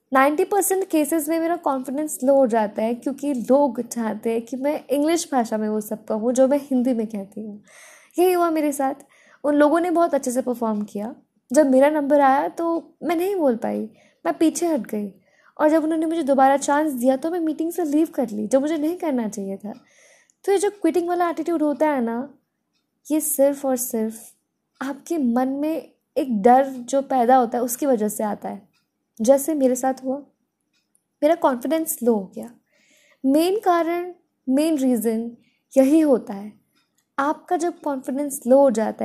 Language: Hindi